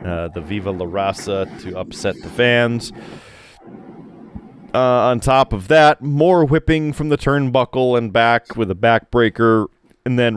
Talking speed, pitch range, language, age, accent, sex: 150 wpm, 115-150 Hz, English, 30-49, American, male